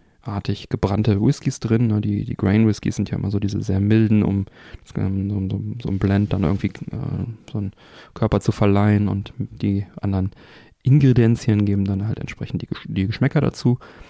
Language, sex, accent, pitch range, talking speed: German, male, German, 100-120 Hz, 160 wpm